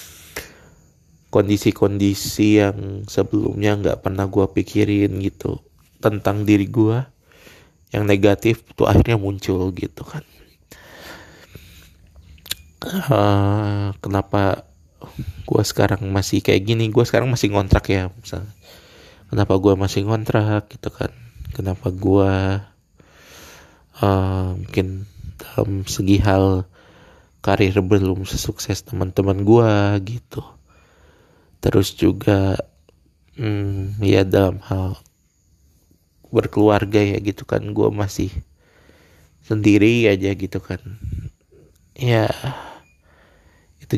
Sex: male